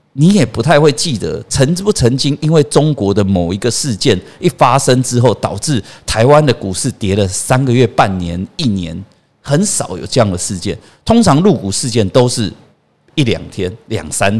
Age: 50-69